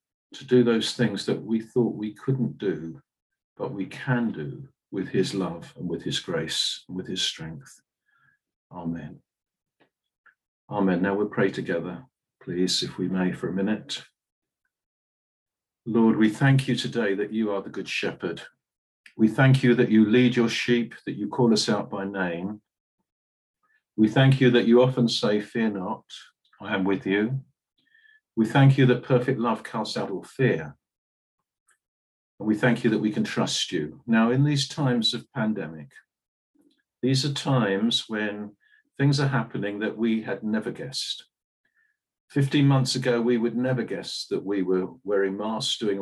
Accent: British